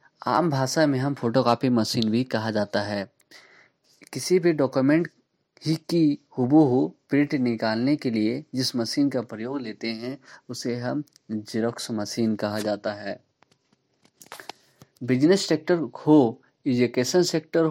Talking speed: 135 wpm